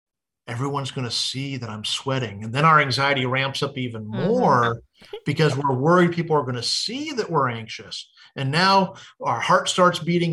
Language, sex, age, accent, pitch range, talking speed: English, male, 50-69, American, 130-170 Hz, 185 wpm